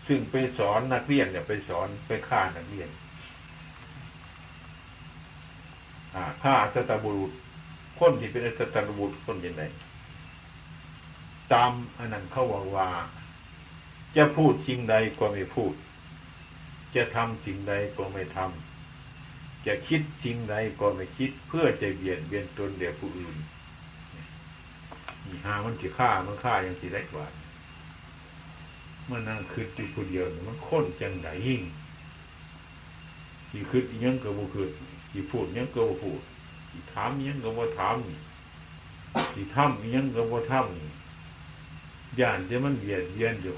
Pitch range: 80-125 Hz